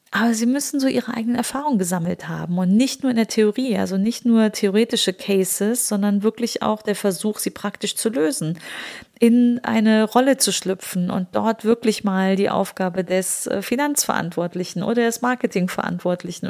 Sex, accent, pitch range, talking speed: female, German, 190-235 Hz, 165 wpm